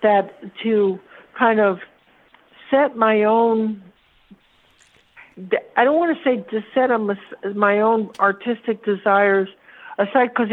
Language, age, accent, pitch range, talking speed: English, 60-79, American, 200-240 Hz, 115 wpm